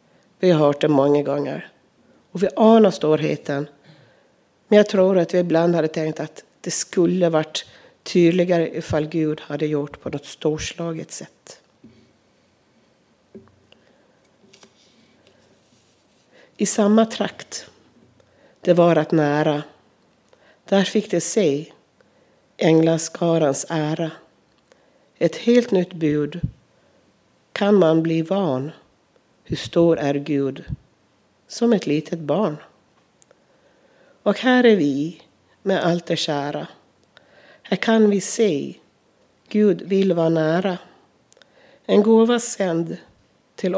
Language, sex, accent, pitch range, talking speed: Swedish, female, native, 150-195 Hz, 110 wpm